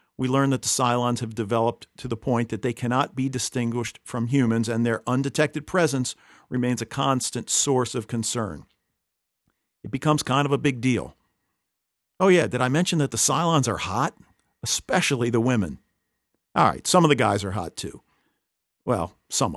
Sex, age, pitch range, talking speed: male, 50-69, 115-135 Hz, 180 wpm